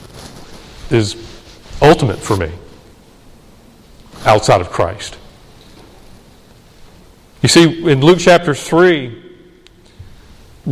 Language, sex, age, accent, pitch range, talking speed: English, male, 40-59, American, 130-210 Hz, 75 wpm